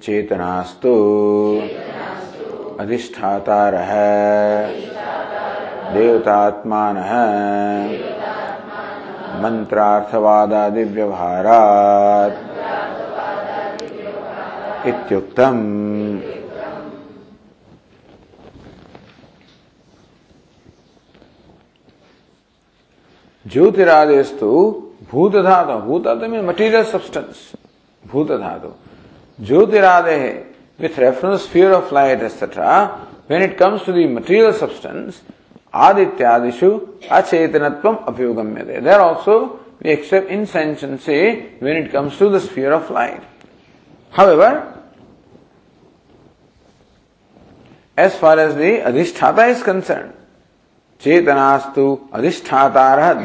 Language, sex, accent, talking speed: English, male, Indian, 65 wpm